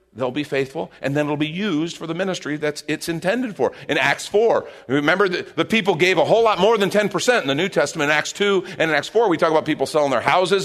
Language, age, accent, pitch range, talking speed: English, 50-69, American, 130-185 Hz, 265 wpm